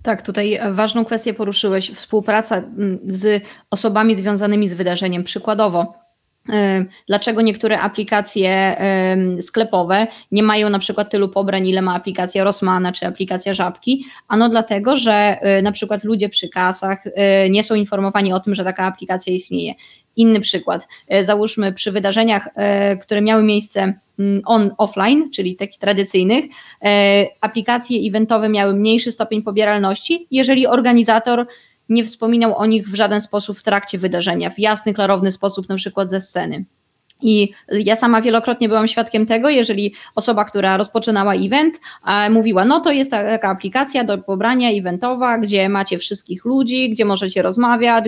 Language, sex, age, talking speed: Polish, female, 20-39, 140 wpm